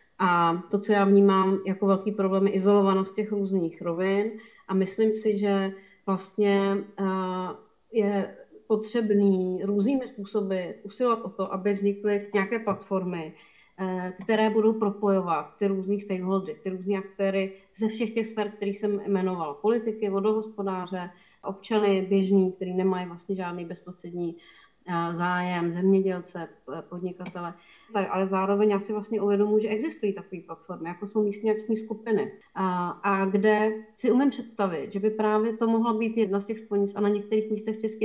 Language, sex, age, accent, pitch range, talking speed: Czech, female, 30-49, native, 190-215 Hz, 150 wpm